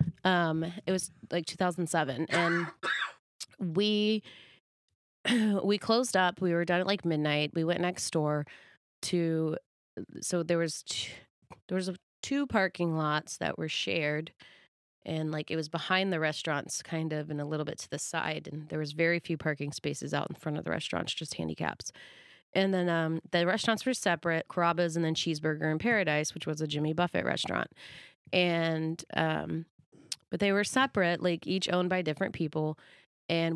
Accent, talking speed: American, 175 wpm